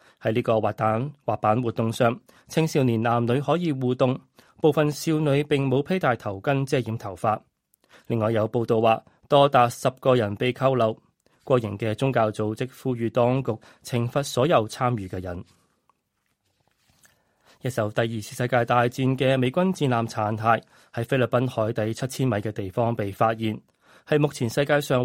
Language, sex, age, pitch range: Chinese, male, 20-39, 115-135 Hz